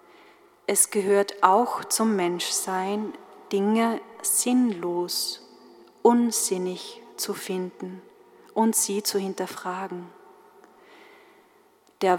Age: 30-49